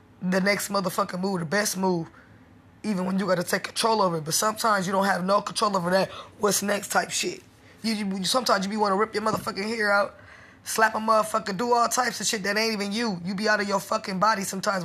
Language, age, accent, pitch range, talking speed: English, 20-39, American, 190-220 Hz, 245 wpm